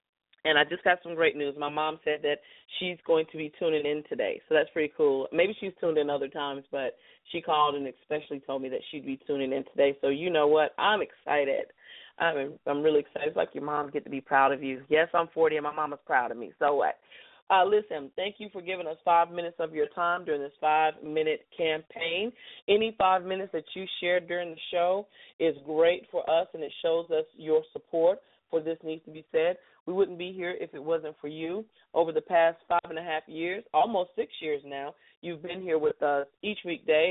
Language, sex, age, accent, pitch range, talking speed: English, female, 30-49, American, 155-185 Hz, 230 wpm